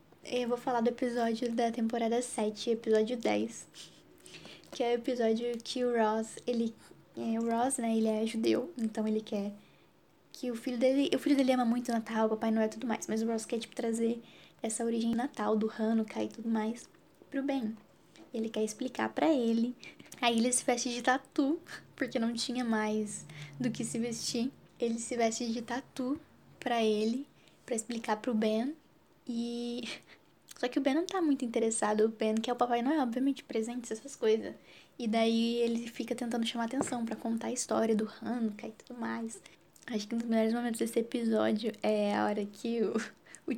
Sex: female